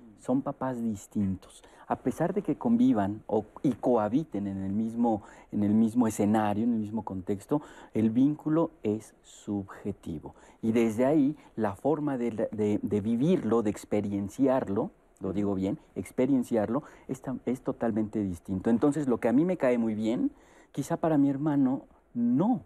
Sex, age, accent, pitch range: male, 50-69, Mexican, 105-150 Hz